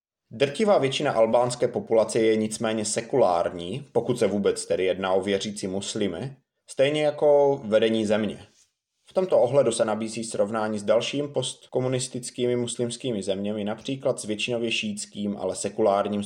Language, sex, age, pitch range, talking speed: Czech, male, 20-39, 105-125 Hz, 135 wpm